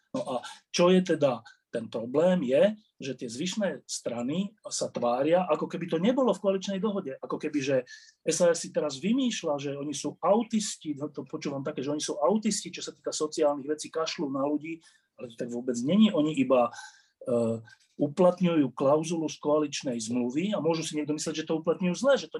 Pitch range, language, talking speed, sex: 145-185 Hz, Slovak, 190 wpm, male